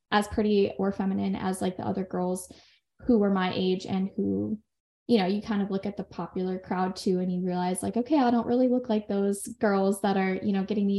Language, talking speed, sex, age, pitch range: English, 240 wpm, female, 10-29, 195-225 Hz